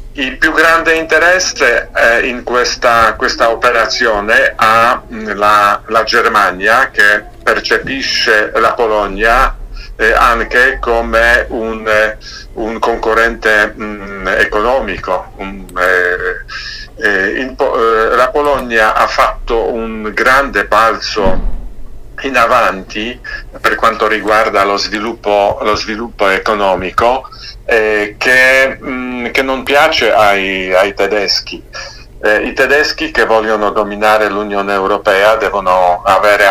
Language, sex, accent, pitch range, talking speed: Italian, male, native, 100-115 Hz, 95 wpm